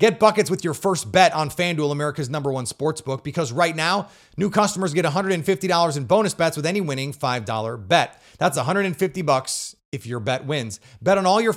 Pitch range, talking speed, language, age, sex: 135-185 Hz, 195 wpm, English, 30-49, male